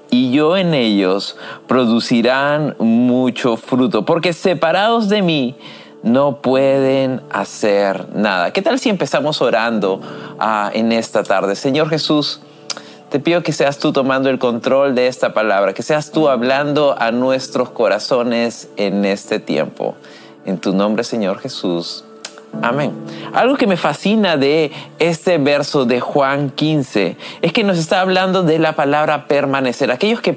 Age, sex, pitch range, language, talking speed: 30-49, male, 125-175 Hz, Spanish, 145 wpm